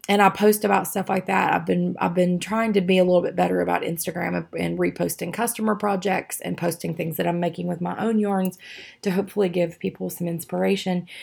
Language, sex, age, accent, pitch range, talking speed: English, female, 20-39, American, 180-210 Hz, 215 wpm